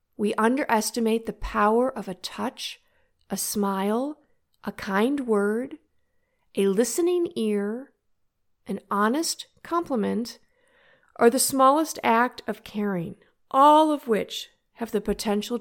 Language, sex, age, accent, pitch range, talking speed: English, female, 50-69, American, 195-240 Hz, 115 wpm